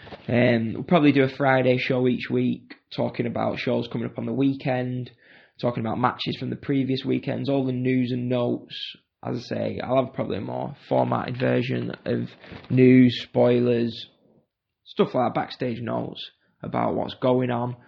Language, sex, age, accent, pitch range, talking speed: English, male, 20-39, British, 125-160 Hz, 170 wpm